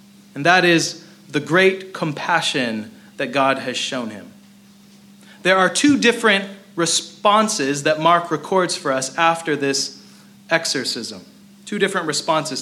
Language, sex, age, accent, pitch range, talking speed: English, male, 30-49, American, 150-200 Hz, 130 wpm